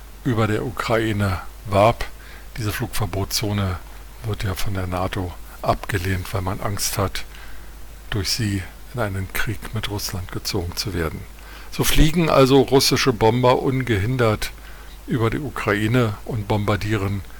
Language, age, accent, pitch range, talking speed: German, 50-69, German, 100-120 Hz, 130 wpm